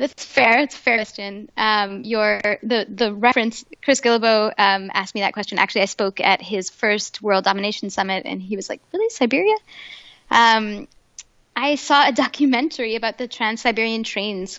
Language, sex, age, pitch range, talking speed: English, female, 10-29, 195-225 Hz, 175 wpm